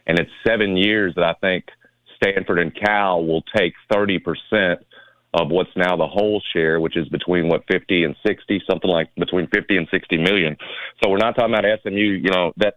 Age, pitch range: 40-59, 90-115 Hz